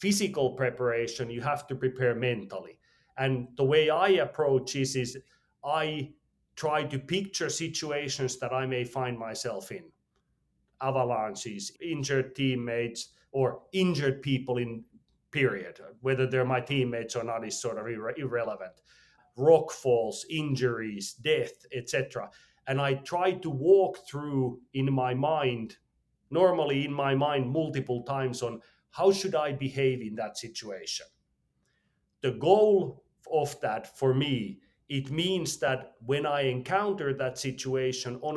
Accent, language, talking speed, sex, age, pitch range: Finnish, English, 135 wpm, male, 40-59, 125-150 Hz